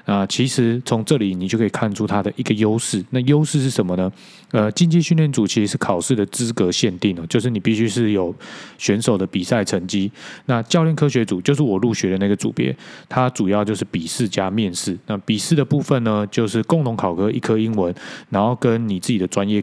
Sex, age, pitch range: male, 20-39, 100-125 Hz